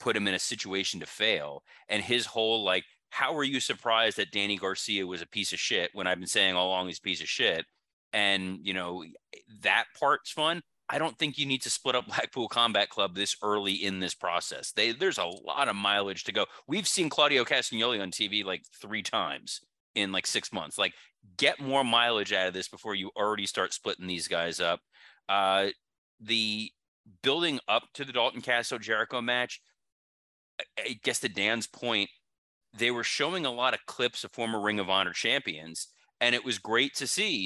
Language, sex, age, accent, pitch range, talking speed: English, male, 30-49, American, 95-120 Hz, 200 wpm